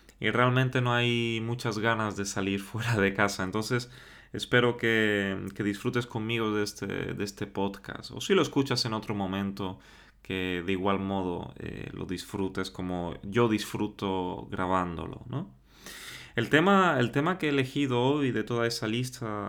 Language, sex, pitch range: Spanish, male, 100-125 Hz